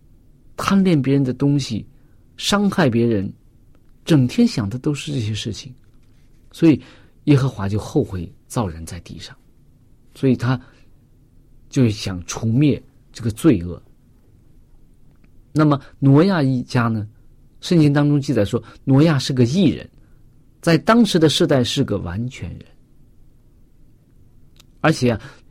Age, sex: 50-69, male